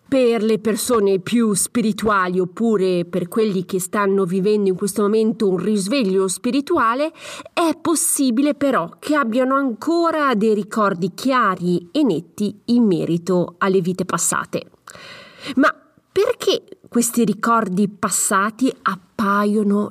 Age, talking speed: 30-49, 120 wpm